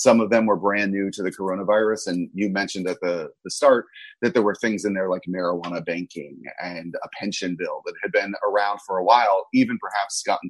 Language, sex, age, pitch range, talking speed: English, male, 30-49, 90-105 Hz, 225 wpm